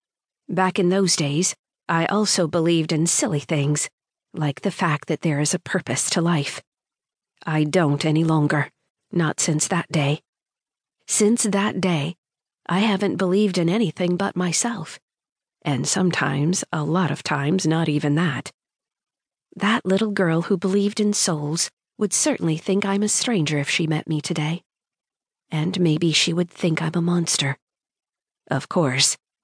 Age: 40-59